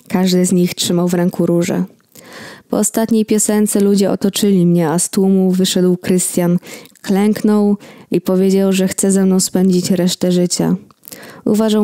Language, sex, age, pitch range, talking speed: Polish, female, 20-39, 175-210 Hz, 145 wpm